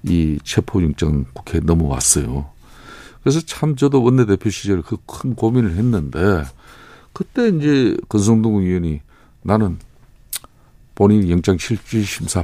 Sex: male